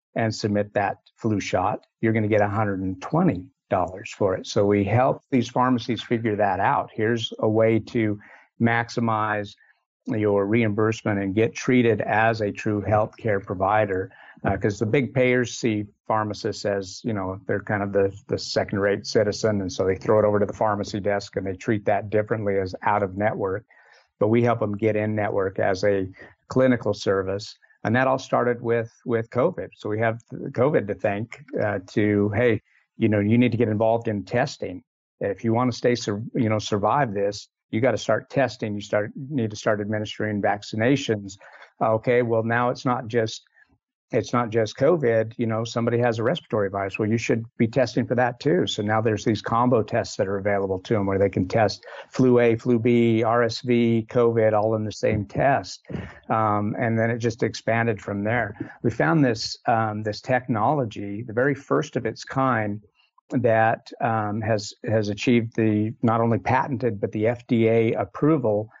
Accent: American